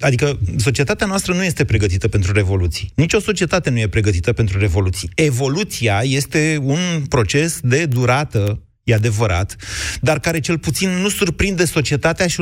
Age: 30-49